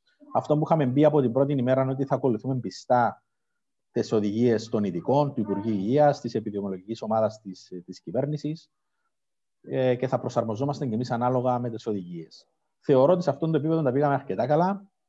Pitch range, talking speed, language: 105-140 Hz, 175 wpm, Greek